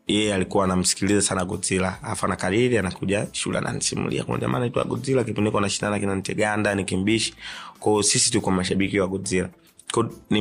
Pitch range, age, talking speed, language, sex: 95-110 Hz, 30-49, 180 wpm, Swahili, male